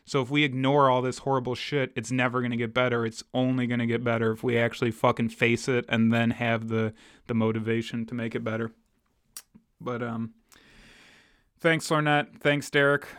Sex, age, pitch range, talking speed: male, 20-39, 120-140 Hz, 190 wpm